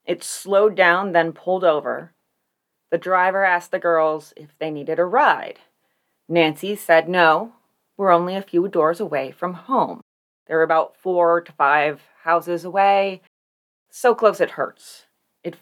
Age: 30-49